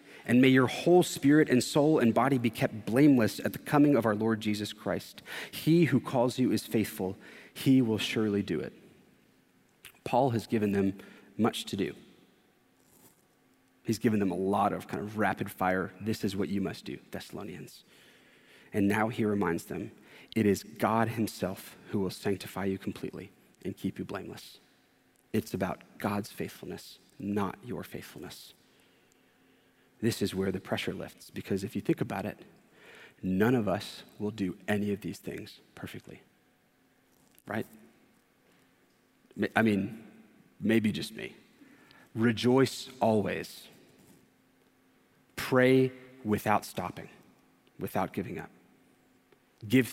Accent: American